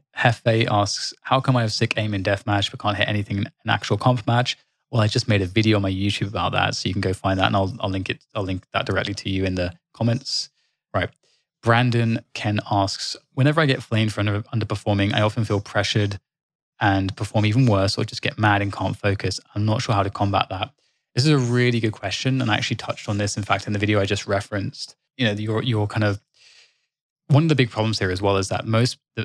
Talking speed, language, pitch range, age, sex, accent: 245 wpm, English, 100-115 Hz, 20-39, male, British